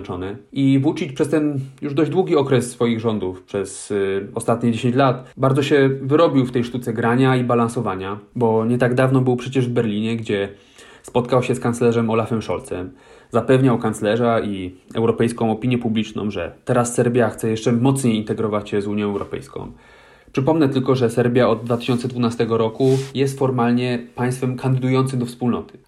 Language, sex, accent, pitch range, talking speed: Polish, male, native, 115-135 Hz, 160 wpm